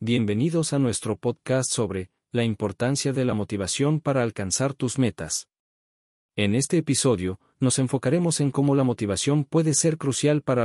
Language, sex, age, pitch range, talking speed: Spanish, male, 40-59, 105-135 Hz, 150 wpm